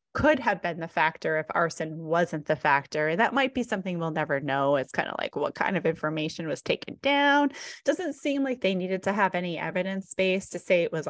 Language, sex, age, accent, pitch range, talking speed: English, female, 30-49, American, 160-250 Hz, 225 wpm